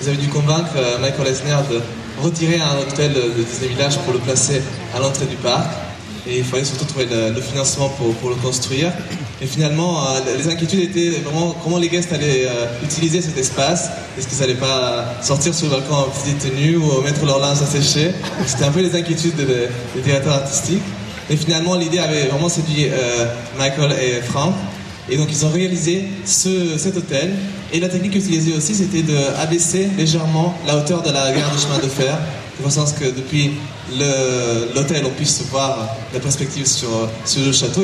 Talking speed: 185 wpm